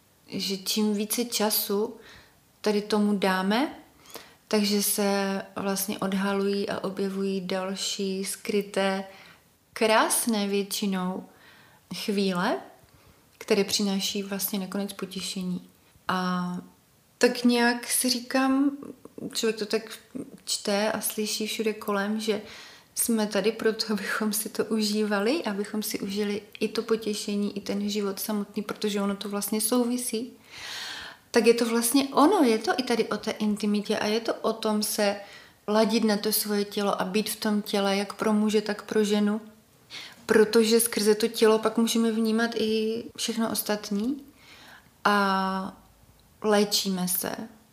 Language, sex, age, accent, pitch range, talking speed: Czech, female, 30-49, native, 200-225 Hz, 135 wpm